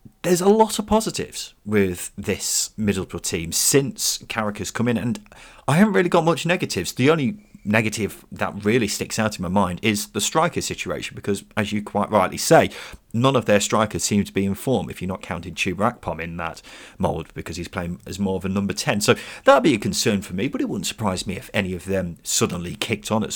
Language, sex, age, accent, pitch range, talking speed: English, male, 30-49, British, 95-135 Hz, 230 wpm